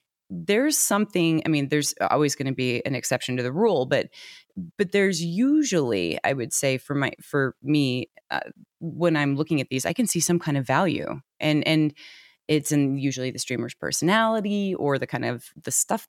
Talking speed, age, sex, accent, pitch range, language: 195 wpm, 30-49, female, American, 150-190 Hz, English